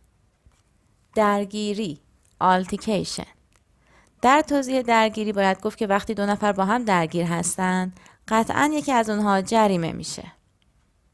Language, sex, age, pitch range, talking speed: Persian, female, 20-39, 175-240 Hz, 115 wpm